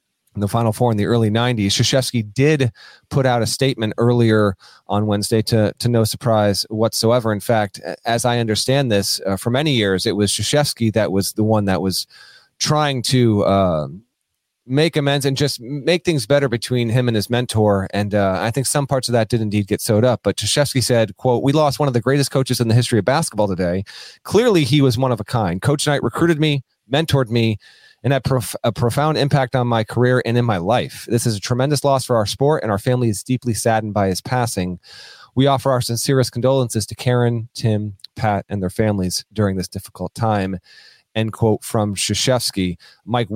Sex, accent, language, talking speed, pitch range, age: male, American, English, 210 wpm, 105-130 Hz, 30-49